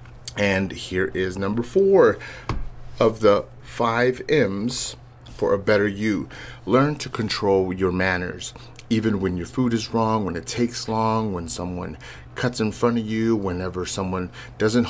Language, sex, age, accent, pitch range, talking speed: English, male, 30-49, American, 95-120 Hz, 155 wpm